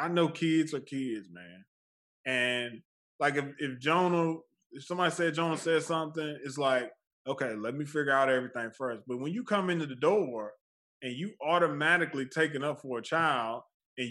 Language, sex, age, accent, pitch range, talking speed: English, male, 20-39, American, 130-175 Hz, 185 wpm